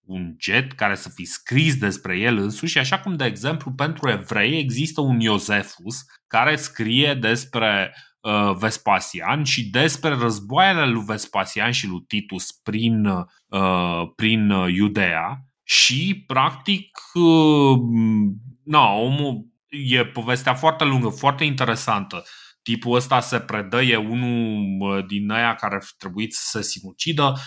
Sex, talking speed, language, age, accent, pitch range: male, 125 wpm, Romanian, 20-39, native, 105-145 Hz